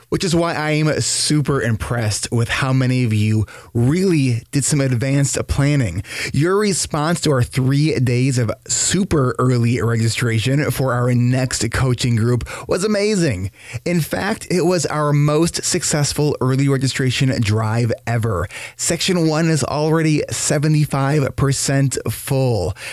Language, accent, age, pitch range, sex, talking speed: English, American, 20-39, 120-155 Hz, male, 135 wpm